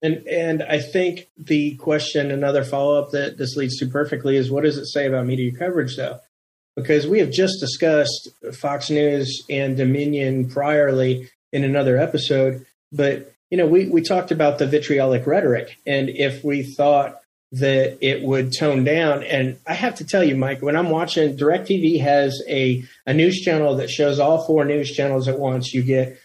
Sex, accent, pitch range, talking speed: male, American, 135-165 Hz, 185 wpm